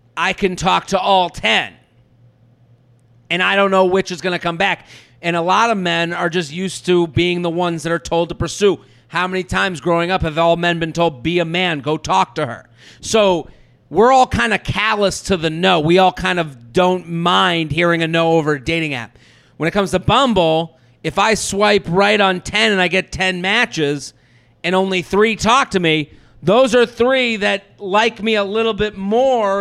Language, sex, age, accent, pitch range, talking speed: English, male, 30-49, American, 165-200 Hz, 210 wpm